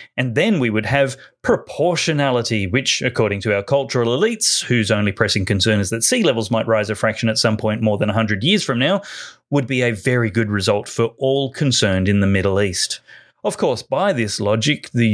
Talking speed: 205 wpm